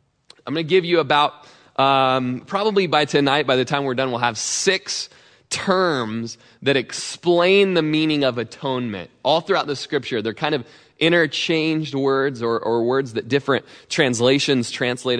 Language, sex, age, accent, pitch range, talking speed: English, male, 20-39, American, 120-155 Hz, 160 wpm